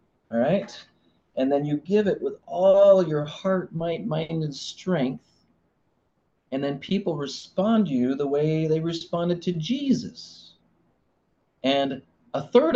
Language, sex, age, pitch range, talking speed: English, male, 30-49, 120-185 Hz, 140 wpm